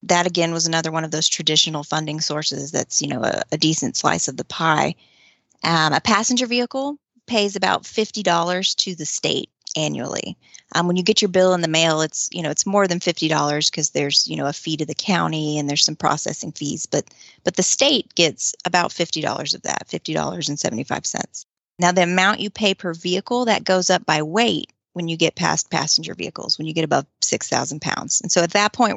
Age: 30-49